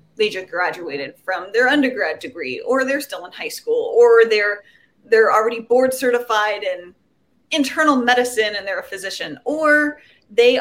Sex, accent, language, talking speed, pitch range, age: female, American, English, 160 wpm, 205-275 Hz, 30-49